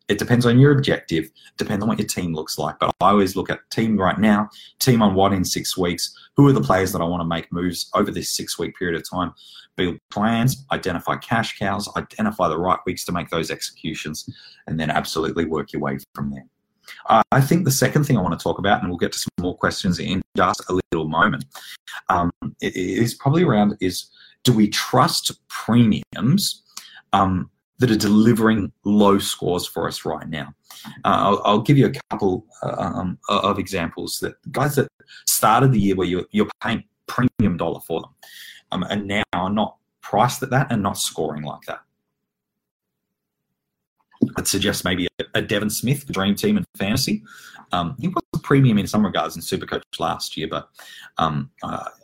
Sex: male